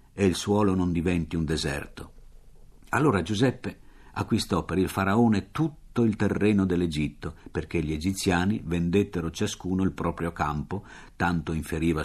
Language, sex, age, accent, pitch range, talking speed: Italian, male, 50-69, native, 80-110 Hz, 135 wpm